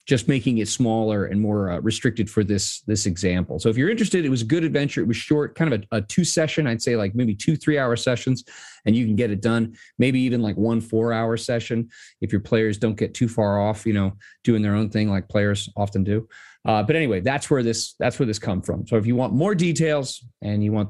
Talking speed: 245 wpm